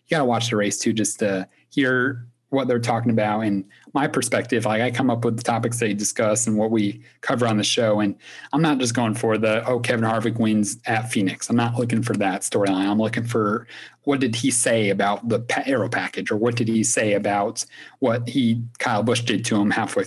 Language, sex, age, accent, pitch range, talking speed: English, male, 30-49, American, 110-125 Hz, 225 wpm